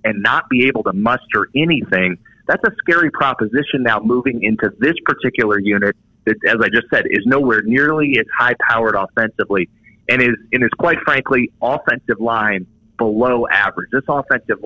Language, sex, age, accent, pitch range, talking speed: English, male, 30-49, American, 100-120 Hz, 170 wpm